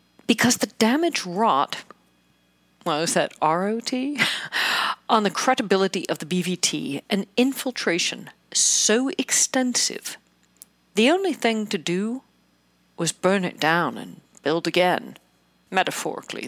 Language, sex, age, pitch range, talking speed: English, female, 40-59, 175-245 Hz, 115 wpm